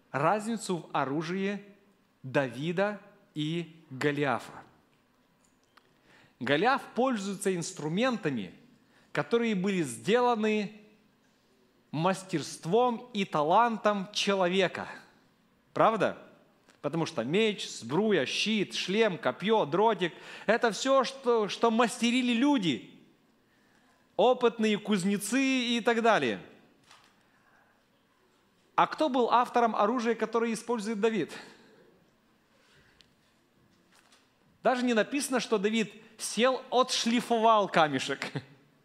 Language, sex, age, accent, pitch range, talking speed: Russian, male, 40-59, native, 190-240 Hz, 80 wpm